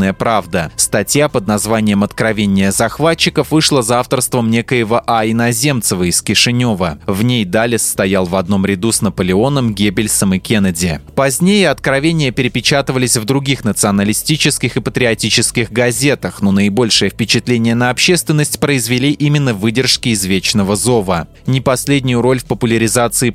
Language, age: Russian, 20-39